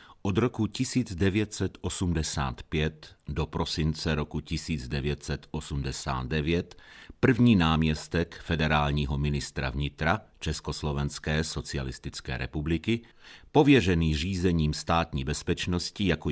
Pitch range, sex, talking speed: 70-90 Hz, male, 75 wpm